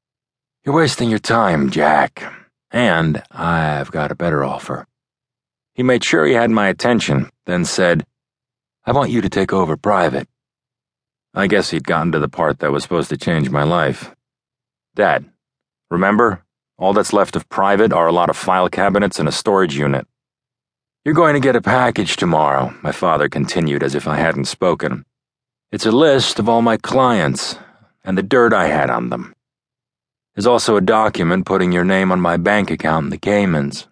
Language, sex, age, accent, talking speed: English, male, 40-59, American, 180 wpm